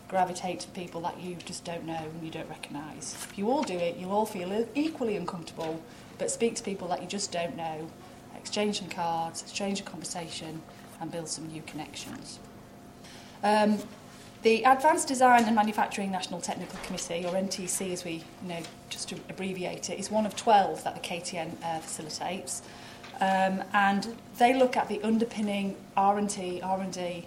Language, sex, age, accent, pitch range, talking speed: English, female, 30-49, British, 175-210 Hz, 175 wpm